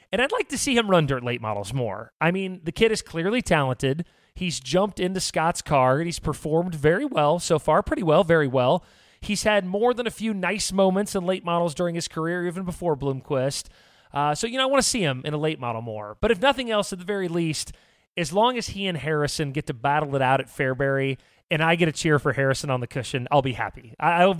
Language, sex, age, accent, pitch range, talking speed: English, male, 30-49, American, 135-190 Hz, 250 wpm